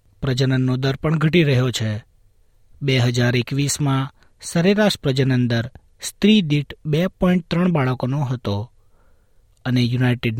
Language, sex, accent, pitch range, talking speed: Gujarati, male, native, 120-165 Hz, 110 wpm